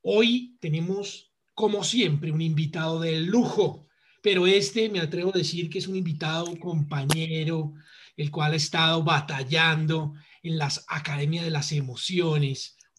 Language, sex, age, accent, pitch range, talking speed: Spanish, male, 40-59, Colombian, 155-205 Hz, 150 wpm